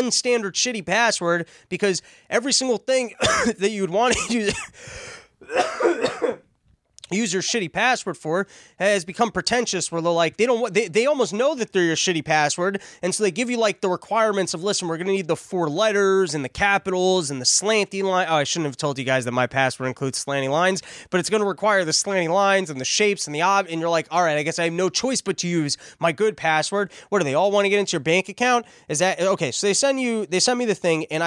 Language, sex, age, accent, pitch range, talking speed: English, male, 20-39, American, 155-205 Hz, 240 wpm